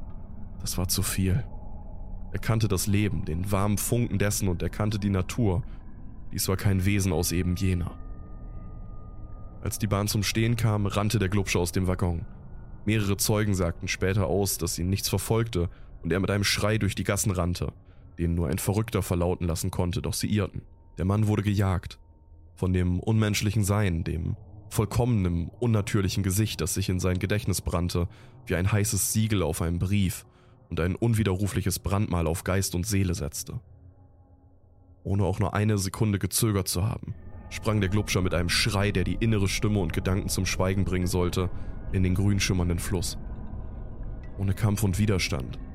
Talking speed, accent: 170 wpm, German